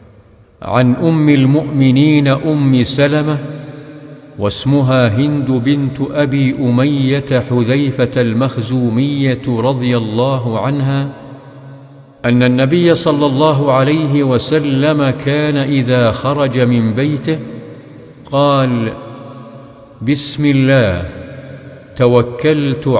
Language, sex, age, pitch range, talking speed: English, male, 50-69, 120-140 Hz, 80 wpm